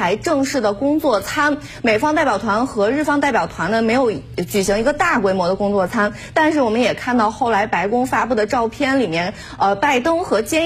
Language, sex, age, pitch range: Chinese, female, 30-49, 215-300 Hz